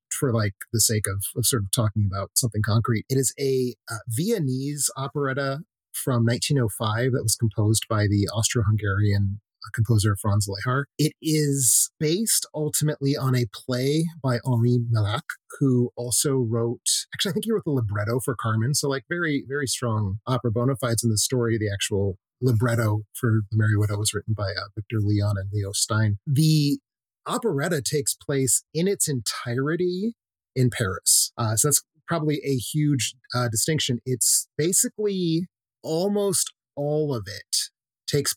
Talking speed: 160 wpm